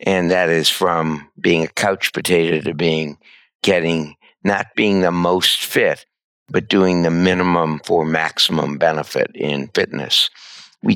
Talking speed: 140 wpm